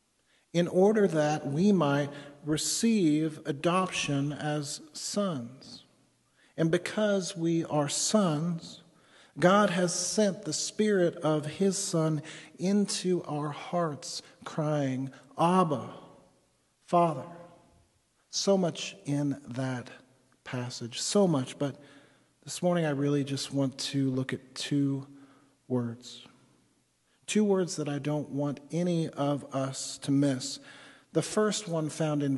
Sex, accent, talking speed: male, American, 115 wpm